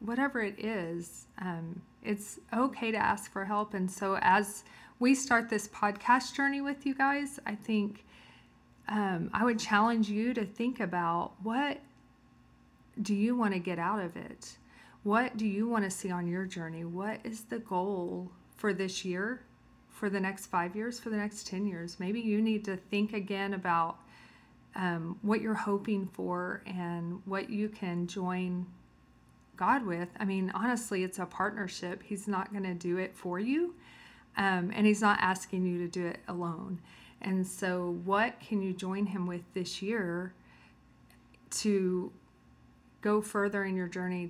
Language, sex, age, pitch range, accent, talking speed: English, female, 40-59, 180-215 Hz, American, 170 wpm